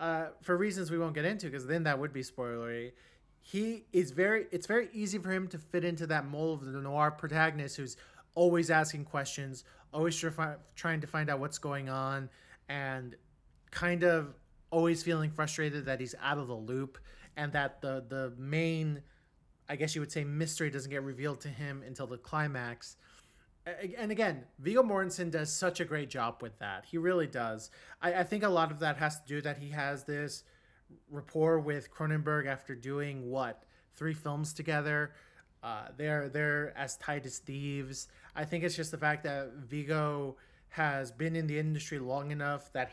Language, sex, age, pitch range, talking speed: English, male, 30-49, 135-165 Hz, 185 wpm